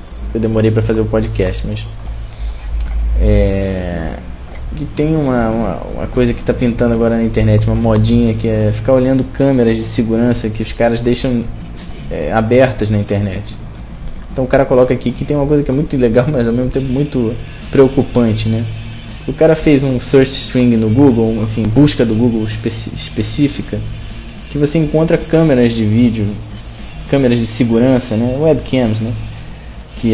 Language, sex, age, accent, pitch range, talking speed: Portuguese, male, 20-39, Brazilian, 110-130 Hz, 160 wpm